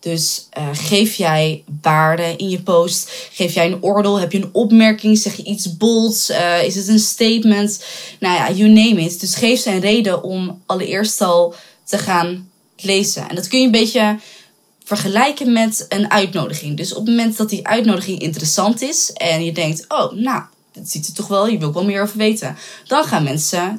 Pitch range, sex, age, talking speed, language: 170-215 Hz, female, 20-39, 200 wpm, Dutch